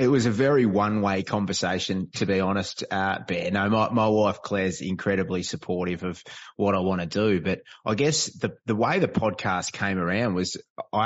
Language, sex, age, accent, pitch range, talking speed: English, male, 30-49, Australian, 95-110 Hz, 195 wpm